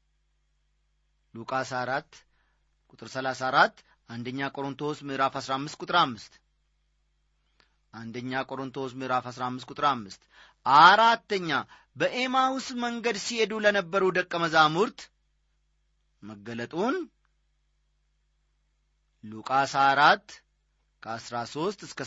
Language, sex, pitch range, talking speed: Amharic, male, 125-170 Hz, 75 wpm